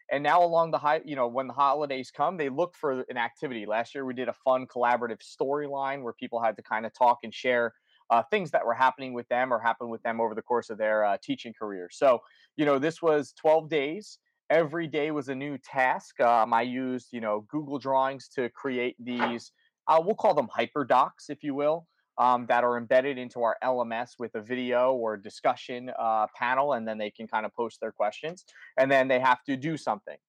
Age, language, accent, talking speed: 20-39, English, American, 225 wpm